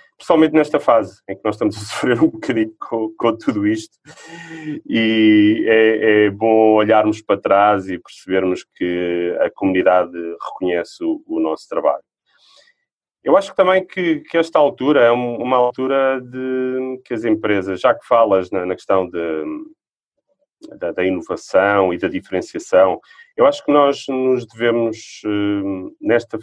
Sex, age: male, 30-49